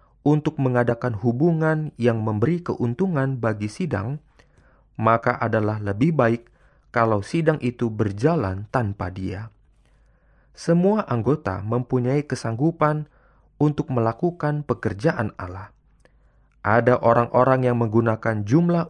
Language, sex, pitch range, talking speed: Indonesian, male, 110-150 Hz, 100 wpm